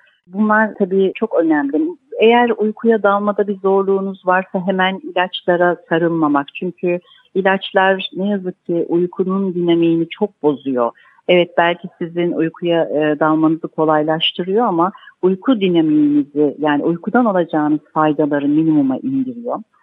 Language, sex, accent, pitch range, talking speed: Turkish, female, native, 160-210 Hz, 110 wpm